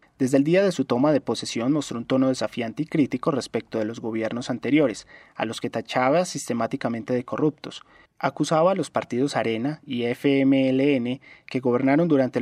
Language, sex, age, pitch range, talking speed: Spanish, male, 20-39, 120-145 Hz, 175 wpm